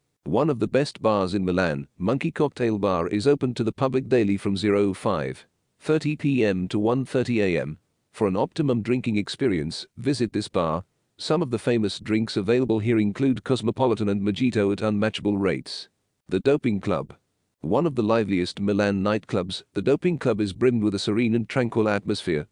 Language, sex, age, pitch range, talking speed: English, male, 40-59, 100-130 Hz, 165 wpm